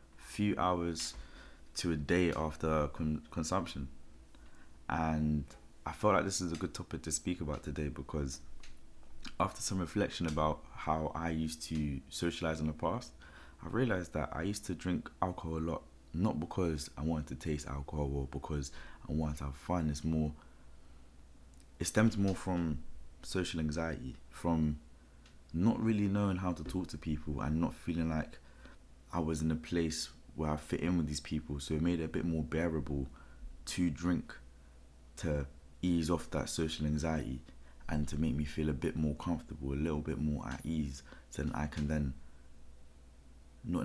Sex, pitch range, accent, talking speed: male, 70-80 Hz, British, 175 wpm